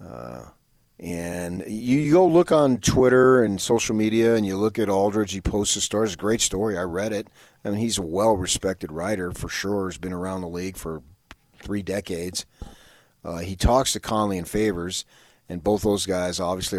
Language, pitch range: English, 85-105 Hz